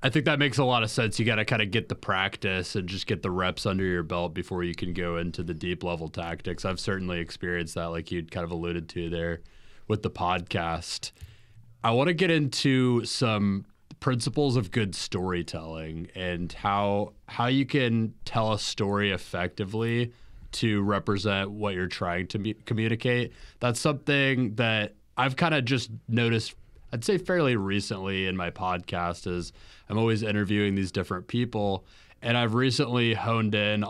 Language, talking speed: English, 180 wpm